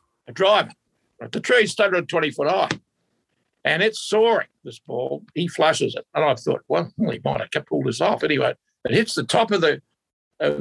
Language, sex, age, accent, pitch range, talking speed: English, male, 60-79, American, 145-200 Hz, 185 wpm